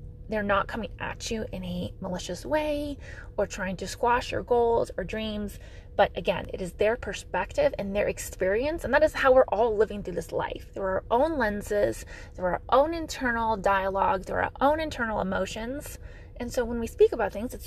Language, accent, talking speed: English, American, 195 wpm